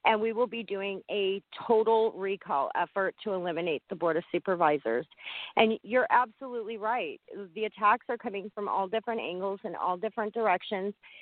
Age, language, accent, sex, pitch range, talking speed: 40-59, English, American, female, 190-225 Hz, 165 wpm